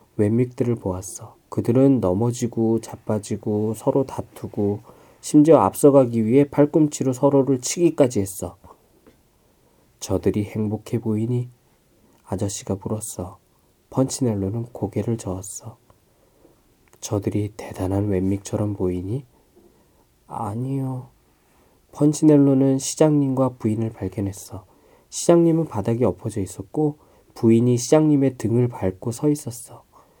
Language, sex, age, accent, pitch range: Korean, male, 20-39, native, 100-130 Hz